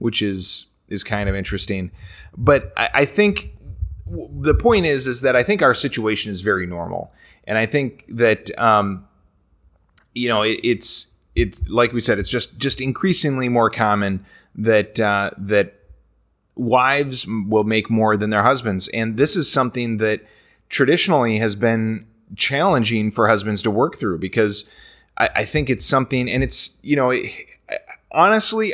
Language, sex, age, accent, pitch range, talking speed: English, male, 30-49, American, 100-130 Hz, 160 wpm